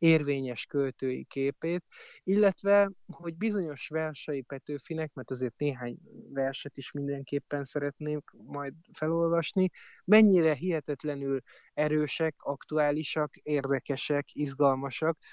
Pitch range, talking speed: 135-170 Hz, 90 wpm